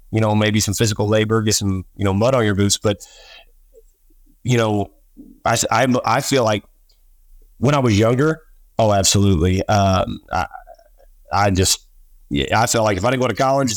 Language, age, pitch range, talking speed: English, 30-49, 100-115 Hz, 185 wpm